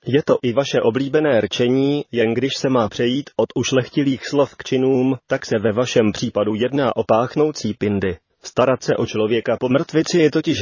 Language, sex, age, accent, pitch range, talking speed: Czech, male, 30-49, native, 115-135 Hz, 185 wpm